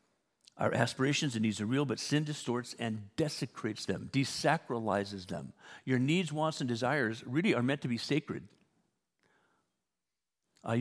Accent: American